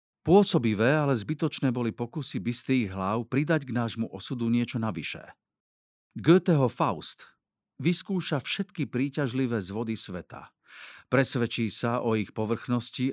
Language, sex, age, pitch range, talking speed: Slovak, male, 50-69, 110-155 Hz, 115 wpm